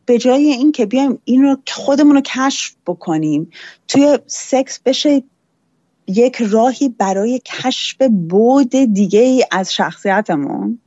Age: 30-49